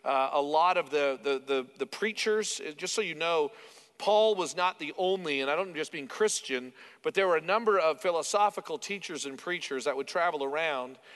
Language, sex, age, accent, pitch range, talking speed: English, male, 40-59, American, 140-215 Hz, 205 wpm